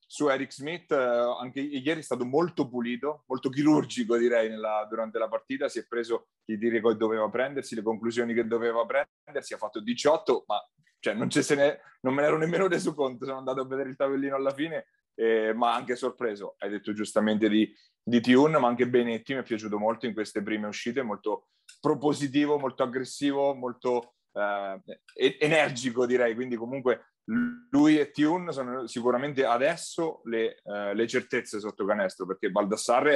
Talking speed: 175 wpm